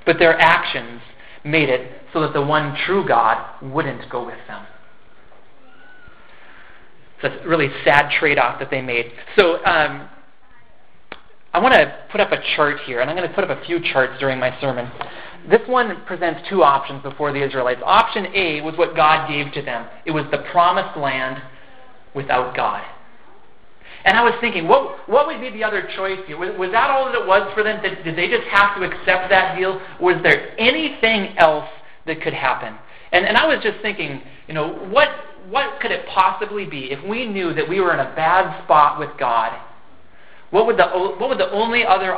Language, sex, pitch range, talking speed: English, male, 135-190 Hz, 200 wpm